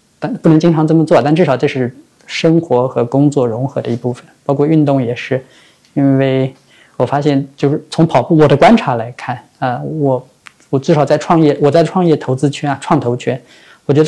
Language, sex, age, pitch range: Chinese, male, 20-39, 130-155 Hz